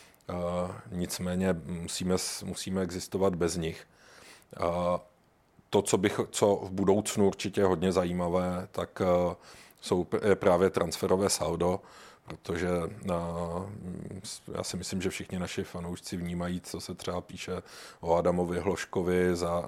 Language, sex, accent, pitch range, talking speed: Czech, male, native, 90-95 Hz, 130 wpm